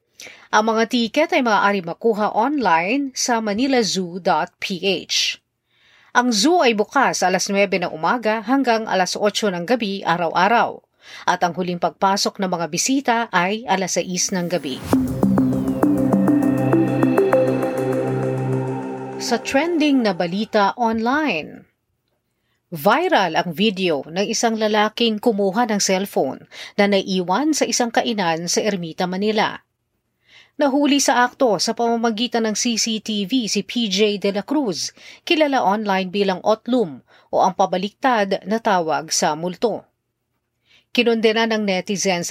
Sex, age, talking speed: female, 40-59, 115 wpm